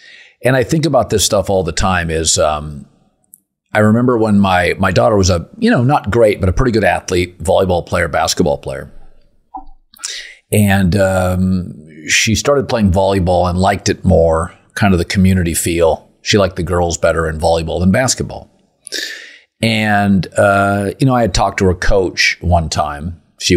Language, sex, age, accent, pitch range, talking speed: English, male, 50-69, American, 85-110 Hz, 175 wpm